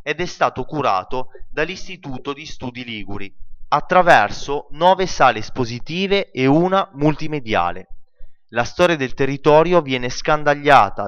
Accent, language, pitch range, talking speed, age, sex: native, Italian, 115-155 Hz, 115 wpm, 20-39, male